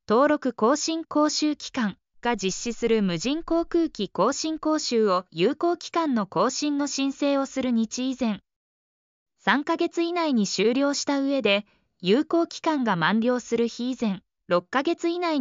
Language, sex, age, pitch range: Japanese, female, 20-39, 195-300 Hz